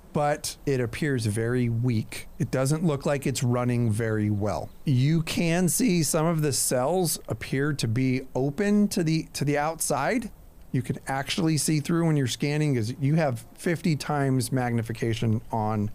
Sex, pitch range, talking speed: male, 115-150 Hz, 165 wpm